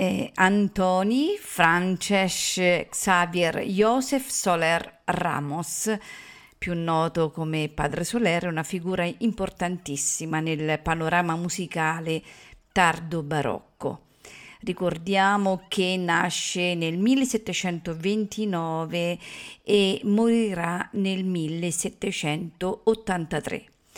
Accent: native